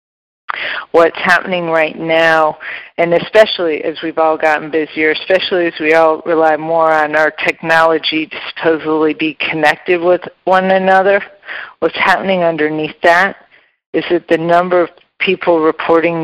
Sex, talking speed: female, 140 wpm